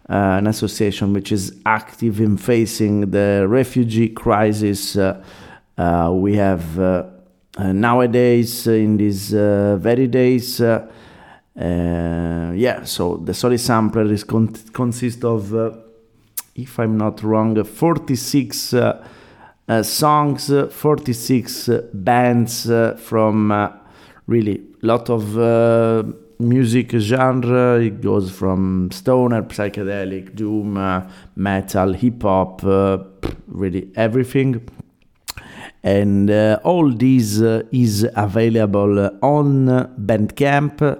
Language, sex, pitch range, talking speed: German, male, 100-120 Hz, 110 wpm